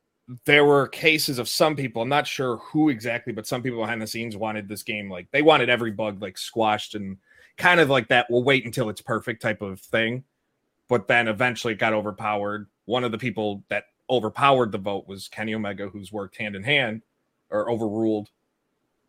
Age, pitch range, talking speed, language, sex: 30-49, 105-135 Hz, 200 wpm, English, male